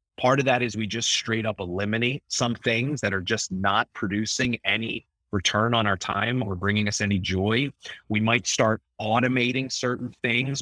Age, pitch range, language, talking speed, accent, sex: 30-49, 105-140 Hz, English, 180 wpm, American, male